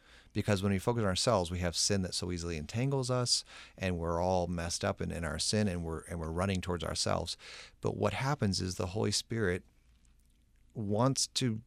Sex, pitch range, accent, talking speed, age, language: male, 85-105 Hz, American, 200 wpm, 40-59, English